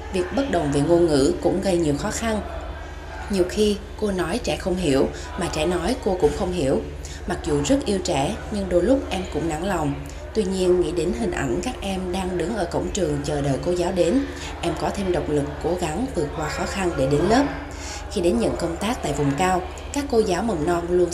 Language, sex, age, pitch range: Vietnamese, female, 20-39, 135-185 Hz